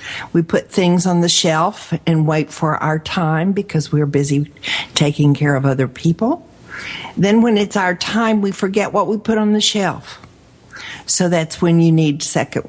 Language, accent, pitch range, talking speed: English, American, 140-180 Hz, 180 wpm